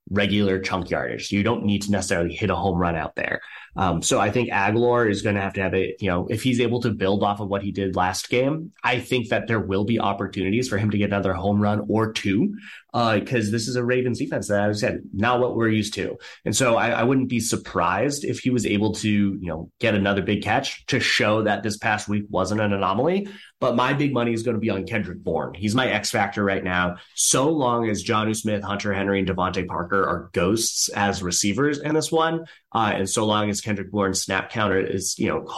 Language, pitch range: English, 100-120 Hz